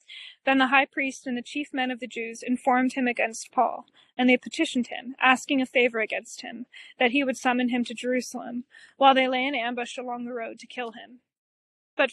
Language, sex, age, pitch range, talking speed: English, female, 20-39, 245-280 Hz, 215 wpm